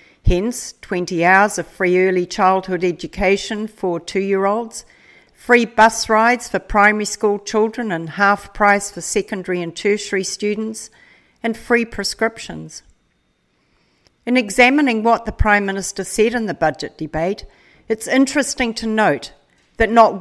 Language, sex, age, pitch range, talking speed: English, female, 60-79, 190-235 Hz, 130 wpm